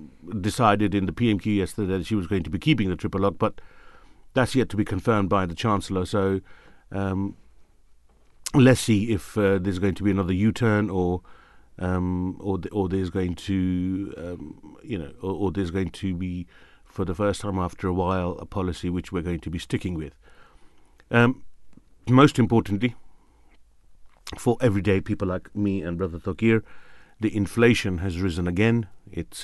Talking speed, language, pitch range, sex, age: 175 wpm, English, 90-105 Hz, male, 50-69